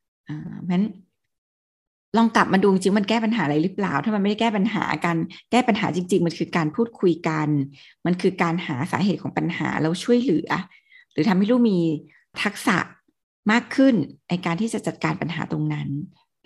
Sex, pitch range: female, 170-225 Hz